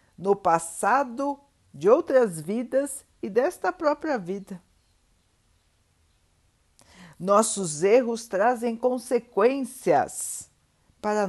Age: 60-79